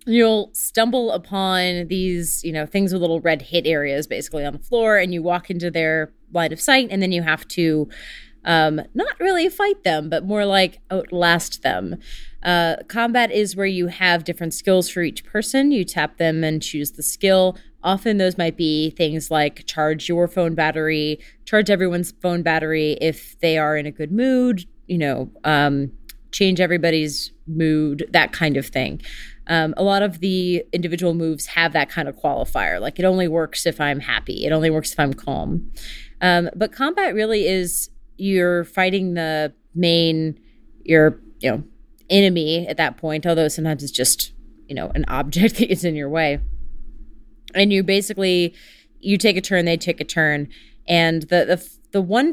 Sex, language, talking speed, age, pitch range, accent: female, English, 180 wpm, 30-49, 155-190 Hz, American